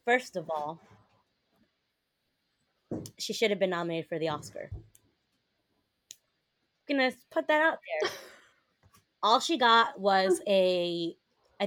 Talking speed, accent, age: 125 wpm, American, 20-39